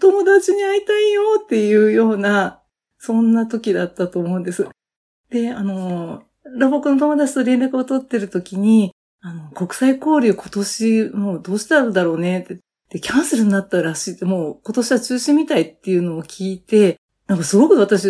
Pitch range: 195-285 Hz